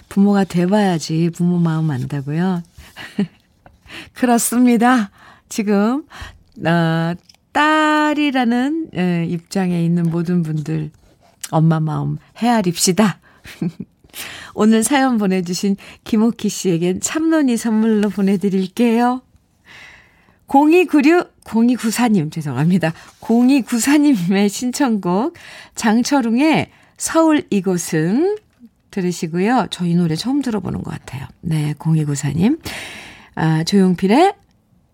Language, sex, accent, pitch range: Korean, female, native, 165-250 Hz